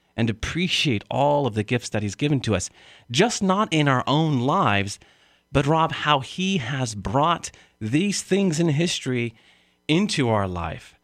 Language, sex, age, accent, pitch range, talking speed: English, male, 40-59, American, 100-125 Hz, 165 wpm